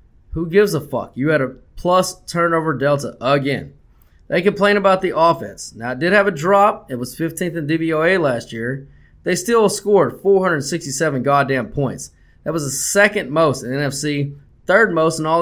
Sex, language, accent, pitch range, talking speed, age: male, English, American, 135-185 Hz, 185 wpm, 20-39